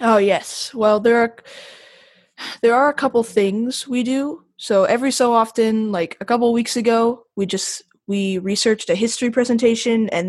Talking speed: 175 wpm